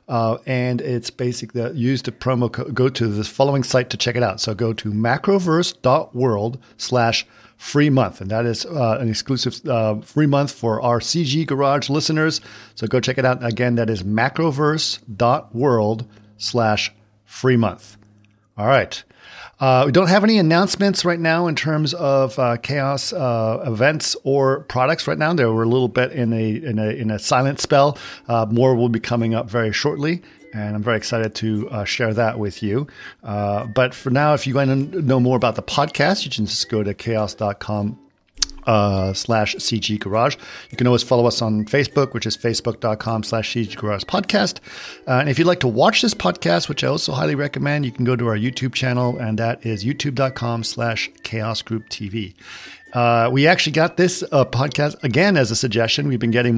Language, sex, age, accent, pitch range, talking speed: English, male, 50-69, American, 110-140 Hz, 195 wpm